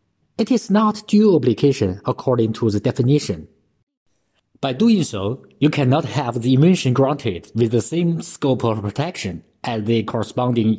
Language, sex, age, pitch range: Chinese, male, 50-69, 110-155 Hz